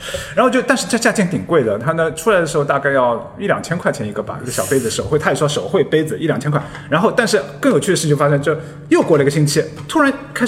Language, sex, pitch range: Chinese, male, 150-230 Hz